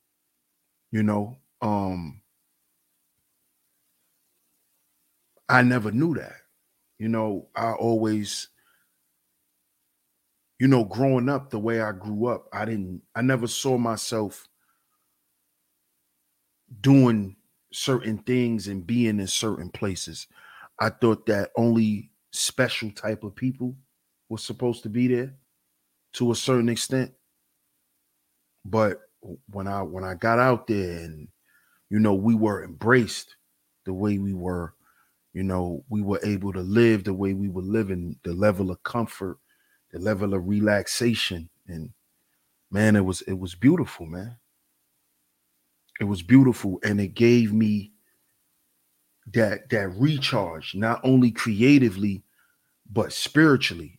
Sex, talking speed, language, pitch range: male, 125 wpm, English, 75-115 Hz